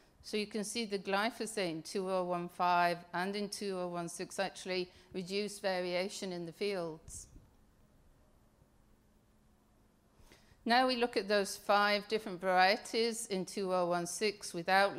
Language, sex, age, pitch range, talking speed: English, female, 50-69, 175-210 Hz, 110 wpm